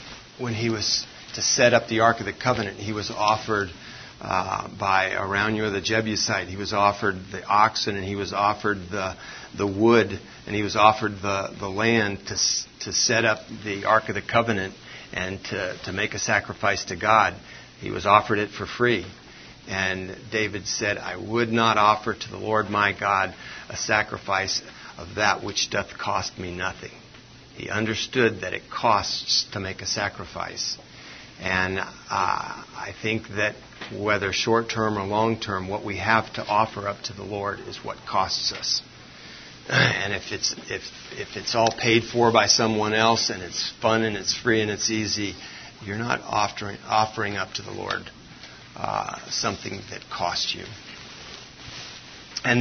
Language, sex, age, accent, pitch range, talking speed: English, male, 50-69, American, 100-115 Hz, 170 wpm